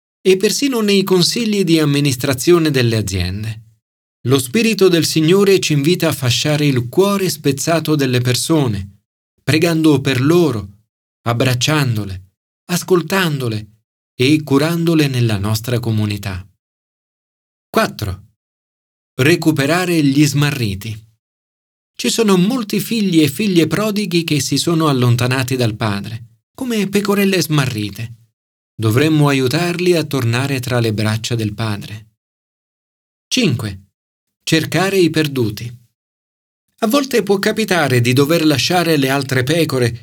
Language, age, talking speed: Italian, 40-59, 110 wpm